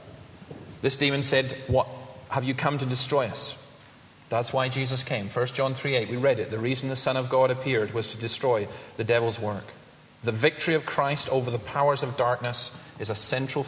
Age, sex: 30-49, male